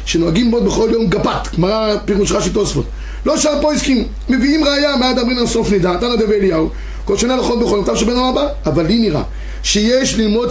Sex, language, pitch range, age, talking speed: male, Hebrew, 190-255 Hz, 30-49, 185 wpm